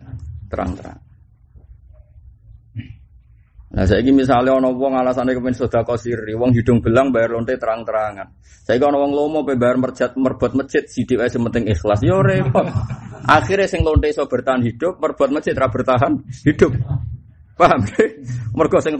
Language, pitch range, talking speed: Indonesian, 105-145 Hz, 135 wpm